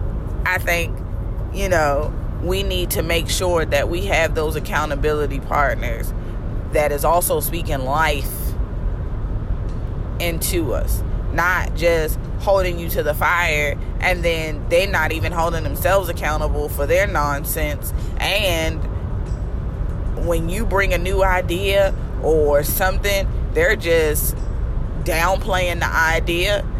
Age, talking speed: 20-39, 120 wpm